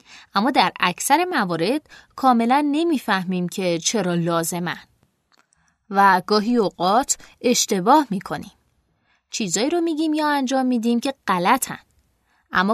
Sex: female